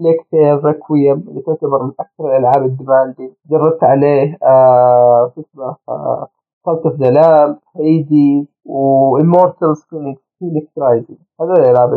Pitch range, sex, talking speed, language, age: 135-175 Hz, male, 115 wpm, Arabic, 30-49